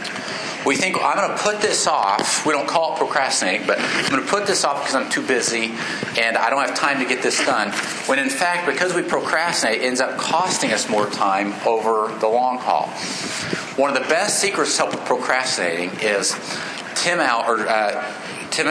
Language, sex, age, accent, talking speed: English, male, 40-59, American, 210 wpm